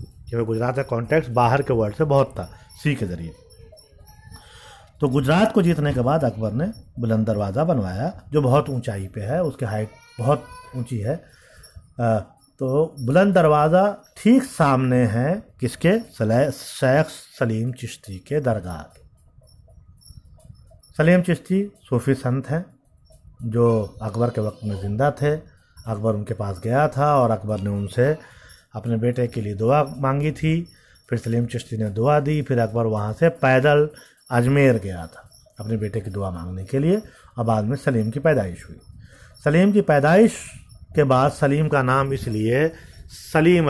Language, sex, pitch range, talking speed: Hindi, male, 110-145 Hz, 155 wpm